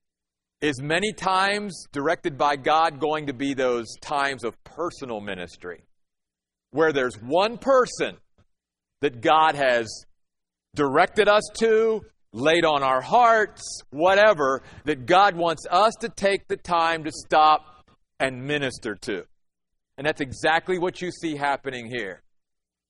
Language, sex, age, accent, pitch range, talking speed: English, male, 40-59, American, 140-195 Hz, 130 wpm